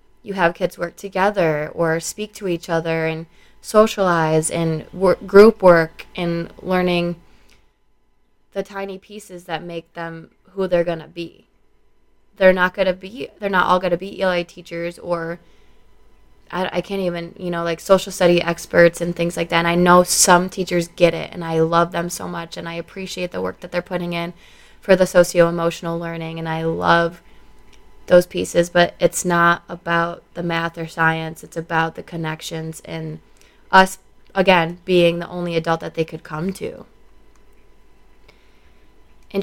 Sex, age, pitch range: female, 20-39, 165-180 Hz